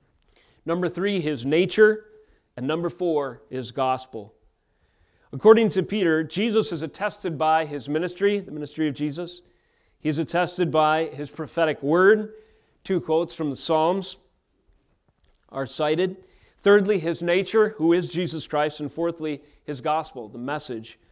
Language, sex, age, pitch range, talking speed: English, male, 40-59, 140-185 Hz, 140 wpm